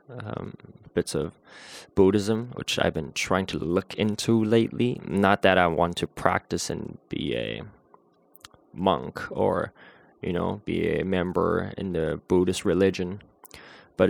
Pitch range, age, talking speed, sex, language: 85-100 Hz, 20-39, 140 wpm, male, English